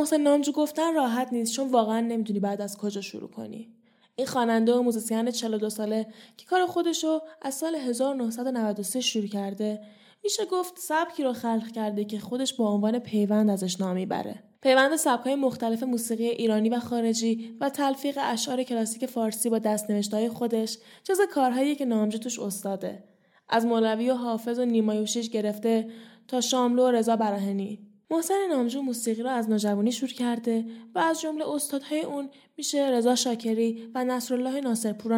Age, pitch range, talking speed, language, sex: 10-29, 220-265 Hz, 160 wpm, Persian, female